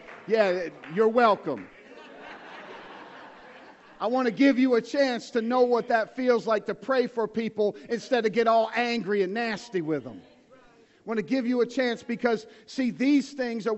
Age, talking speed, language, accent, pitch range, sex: 40-59, 180 wpm, English, American, 215-260 Hz, male